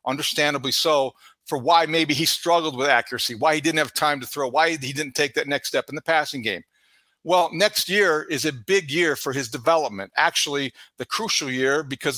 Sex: male